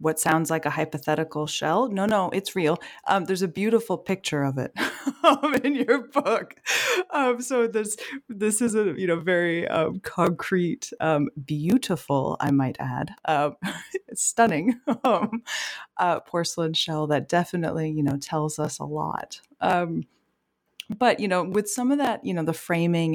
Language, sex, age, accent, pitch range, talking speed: English, female, 30-49, American, 155-200 Hz, 165 wpm